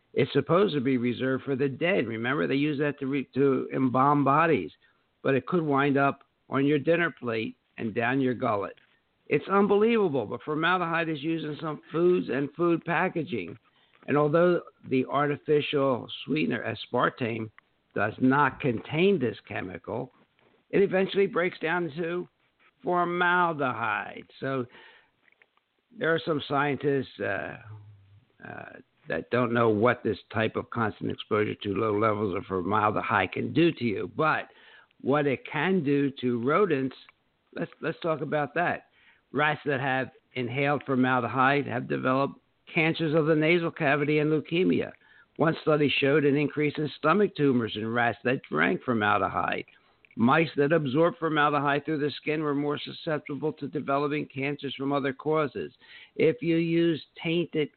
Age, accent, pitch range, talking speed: 60-79, American, 130-160 Hz, 150 wpm